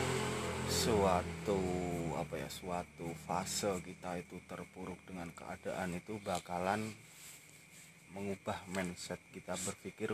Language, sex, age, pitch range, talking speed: Indonesian, male, 30-49, 90-110 Hz, 95 wpm